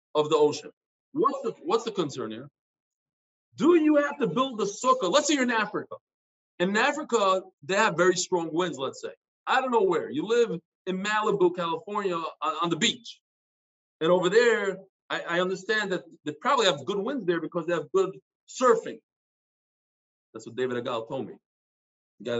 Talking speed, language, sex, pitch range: 185 wpm, English, male, 175-255 Hz